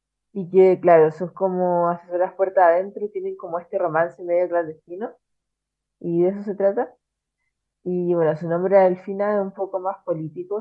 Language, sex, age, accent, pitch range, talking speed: Spanish, female, 20-39, Argentinian, 170-205 Hz, 185 wpm